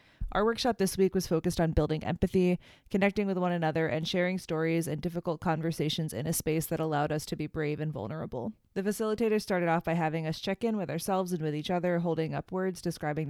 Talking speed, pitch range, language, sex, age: 220 wpm, 160-185 Hz, English, female, 20-39